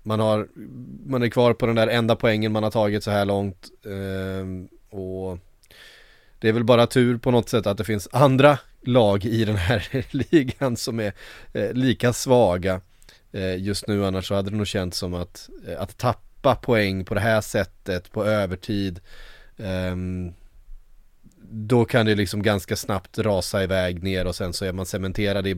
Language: English